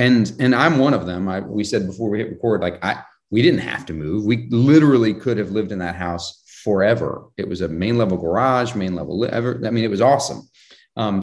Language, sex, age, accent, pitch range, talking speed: English, male, 30-49, American, 100-130 Hz, 235 wpm